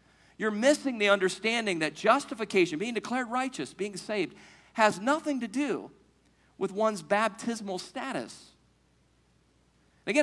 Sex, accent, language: male, American, English